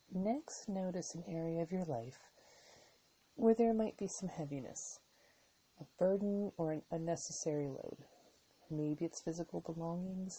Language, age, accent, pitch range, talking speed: English, 30-49, American, 150-195 Hz, 135 wpm